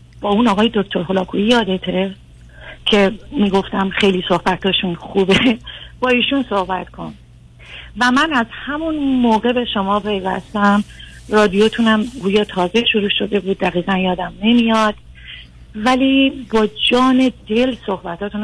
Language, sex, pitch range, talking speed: Persian, female, 185-235 Hz, 115 wpm